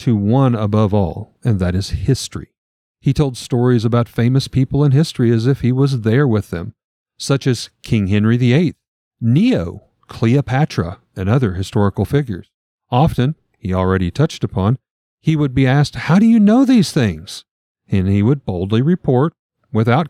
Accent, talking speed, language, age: American, 165 wpm, English, 50-69